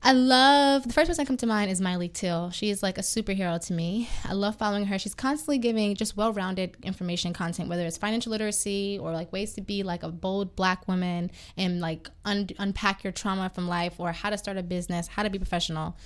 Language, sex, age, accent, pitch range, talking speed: English, female, 20-39, American, 185-210 Hz, 230 wpm